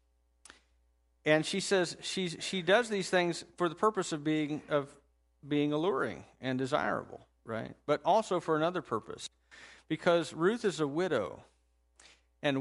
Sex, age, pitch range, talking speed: male, 50-69, 115-150 Hz, 145 wpm